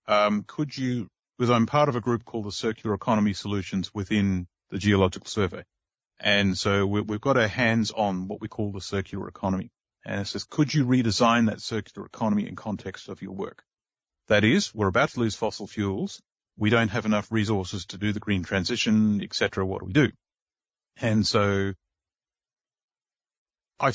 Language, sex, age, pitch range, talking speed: English, male, 40-59, 105-140 Hz, 180 wpm